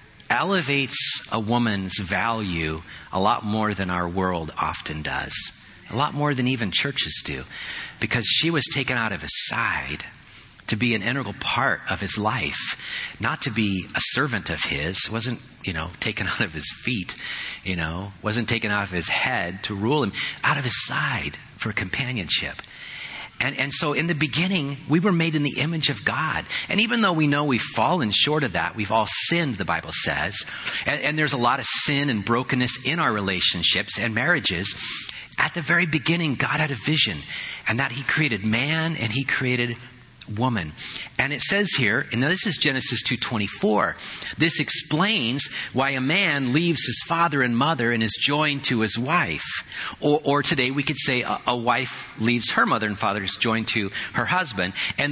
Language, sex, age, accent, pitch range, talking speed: English, male, 40-59, American, 105-150 Hz, 185 wpm